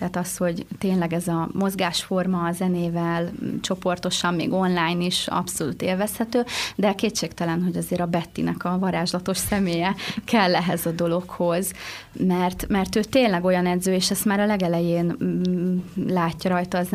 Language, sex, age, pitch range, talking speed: Hungarian, female, 20-39, 175-200 Hz, 150 wpm